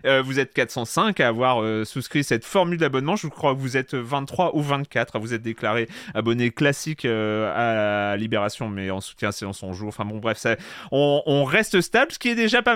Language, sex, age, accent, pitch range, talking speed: French, male, 30-49, French, 120-165 Hz, 225 wpm